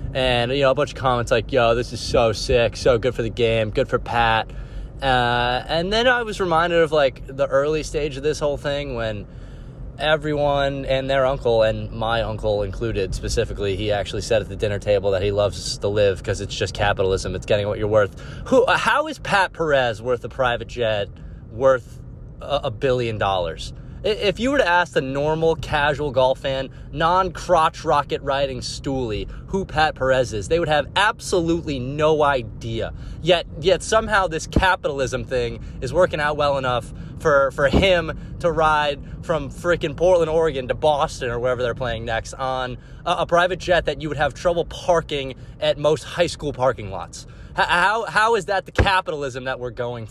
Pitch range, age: 120-160 Hz, 20-39